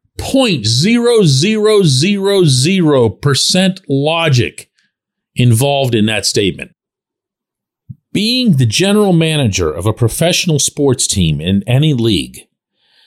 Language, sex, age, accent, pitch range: English, male, 50-69, American, 120-185 Hz